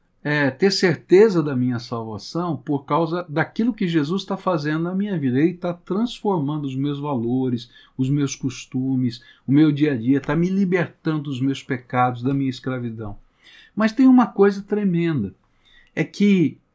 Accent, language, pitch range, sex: Brazilian, Portuguese, 125-170 Hz, male